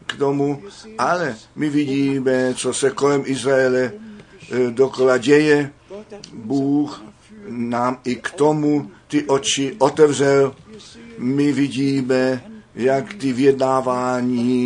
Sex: male